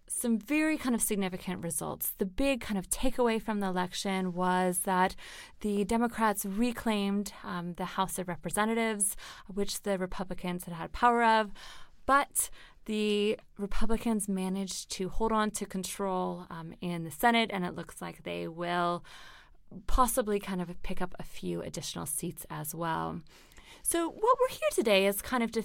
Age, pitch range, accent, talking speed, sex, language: 20-39, 180-230 Hz, American, 165 wpm, female, English